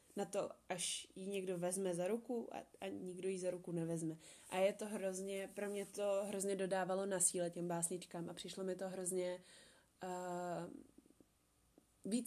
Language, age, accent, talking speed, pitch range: Czech, 20-39, native, 170 wpm, 180-200 Hz